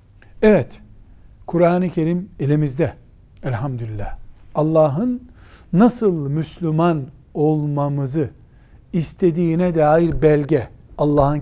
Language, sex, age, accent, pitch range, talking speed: Turkish, male, 60-79, native, 115-180 Hz, 70 wpm